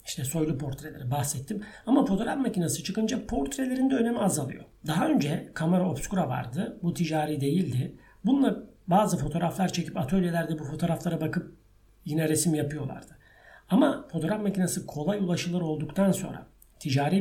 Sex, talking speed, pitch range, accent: male, 135 wpm, 145-190 Hz, native